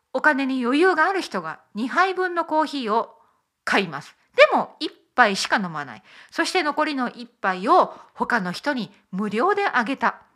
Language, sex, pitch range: Japanese, female, 210-345 Hz